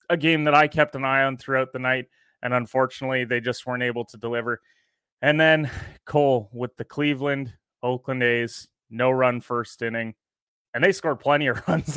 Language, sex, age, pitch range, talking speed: English, male, 30-49, 125-140 Hz, 185 wpm